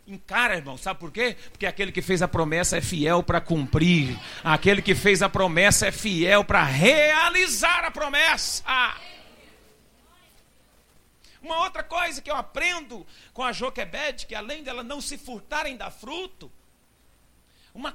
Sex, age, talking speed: male, 50-69, 150 wpm